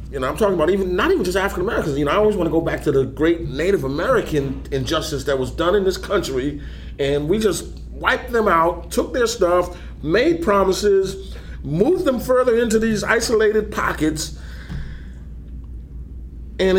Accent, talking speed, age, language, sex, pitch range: American, 180 wpm, 40-59, English, male, 110-180 Hz